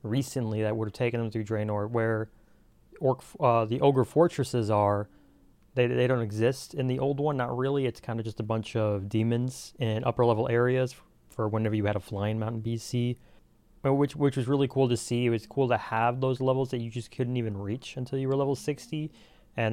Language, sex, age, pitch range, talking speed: English, male, 30-49, 110-130 Hz, 215 wpm